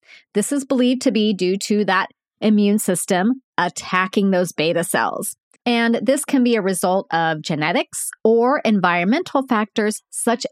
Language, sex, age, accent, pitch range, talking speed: English, female, 40-59, American, 180-240 Hz, 150 wpm